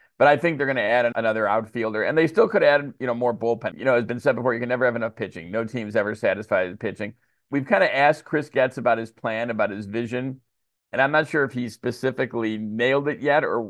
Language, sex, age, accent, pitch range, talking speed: English, male, 50-69, American, 115-135 Hz, 260 wpm